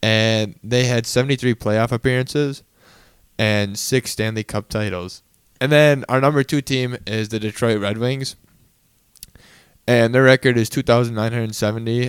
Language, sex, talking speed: English, male, 135 wpm